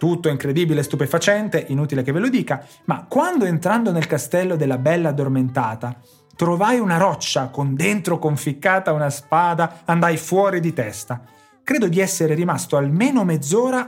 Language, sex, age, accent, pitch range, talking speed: Italian, male, 30-49, native, 145-205 Hz, 145 wpm